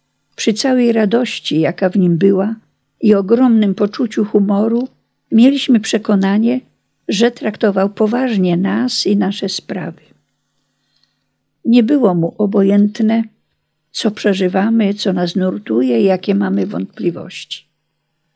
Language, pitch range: Polish, 185-225 Hz